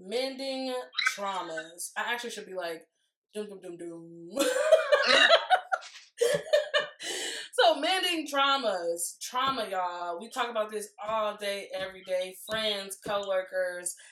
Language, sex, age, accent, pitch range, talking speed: English, female, 20-39, American, 195-260 Hz, 110 wpm